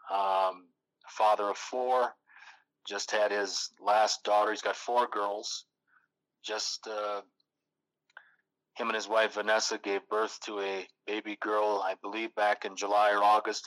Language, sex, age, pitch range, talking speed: English, male, 40-59, 100-110 Hz, 145 wpm